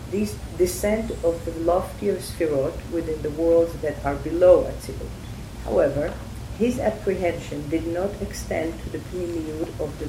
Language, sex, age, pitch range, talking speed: English, female, 50-69, 140-180 Hz, 145 wpm